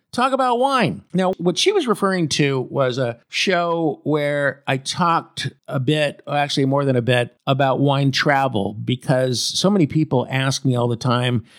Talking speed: 180 wpm